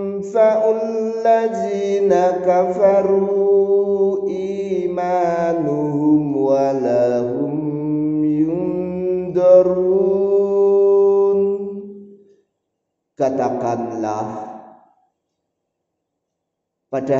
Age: 50-69